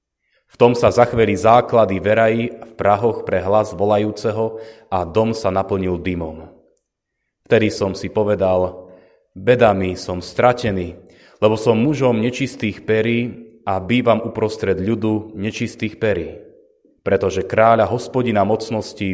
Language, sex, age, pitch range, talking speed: Slovak, male, 30-49, 95-115 Hz, 120 wpm